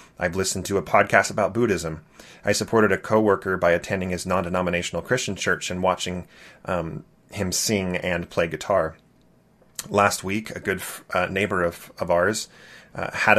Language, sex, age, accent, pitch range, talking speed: English, male, 30-49, American, 85-100 Hz, 160 wpm